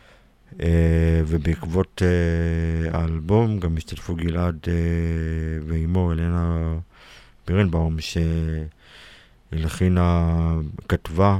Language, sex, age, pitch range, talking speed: Hebrew, male, 50-69, 80-90 Hz, 70 wpm